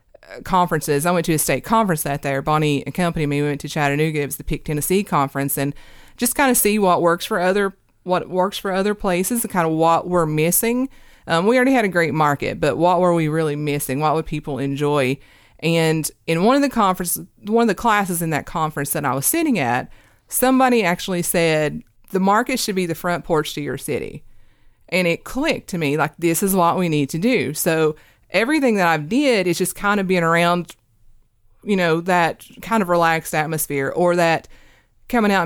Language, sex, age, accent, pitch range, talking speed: English, female, 30-49, American, 145-190 Hz, 215 wpm